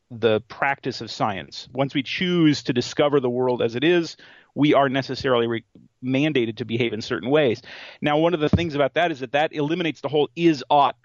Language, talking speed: English, 205 wpm